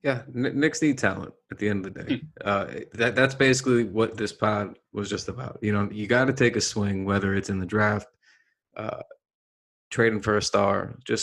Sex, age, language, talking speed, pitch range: male, 20-39, English, 210 wpm, 100-115 Hz